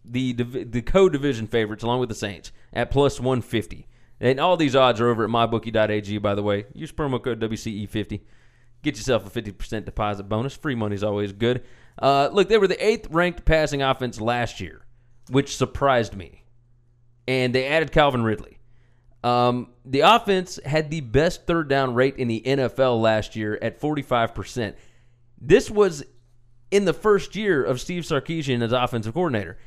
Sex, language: male, English